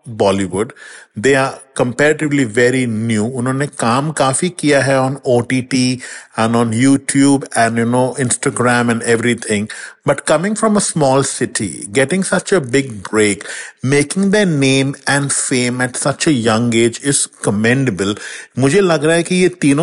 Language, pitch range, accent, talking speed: English, 120-150 Hz, Indian, 140 wpm